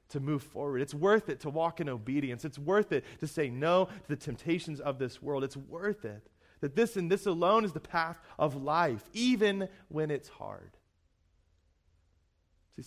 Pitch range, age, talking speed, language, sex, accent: 95-140 Hz, 30-49, 185 wpm, English, male, American